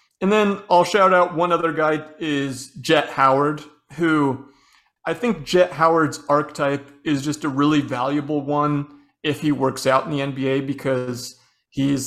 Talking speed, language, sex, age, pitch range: 160 wpm, English, male, 30-49, 140-170 Hz